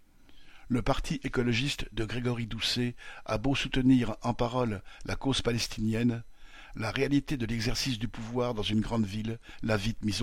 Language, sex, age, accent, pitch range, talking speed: French, male, 50-69, French, 110-130 Hz, 160 wpm